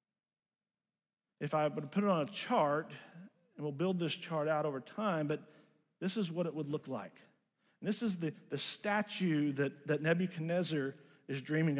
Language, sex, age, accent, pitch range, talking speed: English, male, 50-69, American, 155-215 Hz, 180 wpm